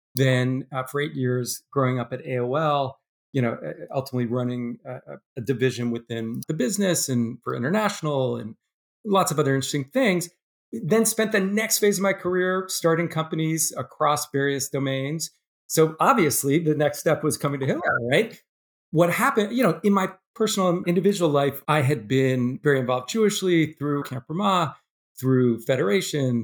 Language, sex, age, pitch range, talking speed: English, male, 40-59, 130-185 Hz, 160 wpm